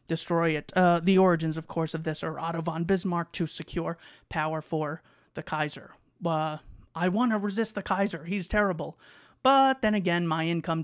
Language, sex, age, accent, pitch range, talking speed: English, male, 30-49, American, 155-190 Hz, 190 wpm